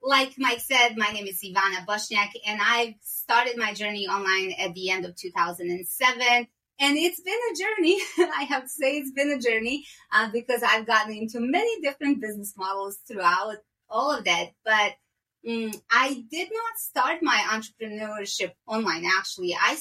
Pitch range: 210-275 Hz